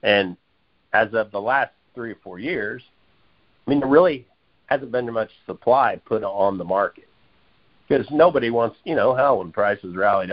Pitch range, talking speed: 95-130 Hz, 180 wpm